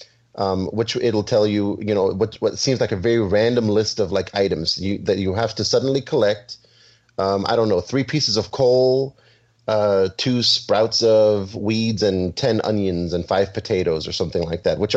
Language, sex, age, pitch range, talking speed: English, male, 30-49, 95-120 Hz, 195 wpm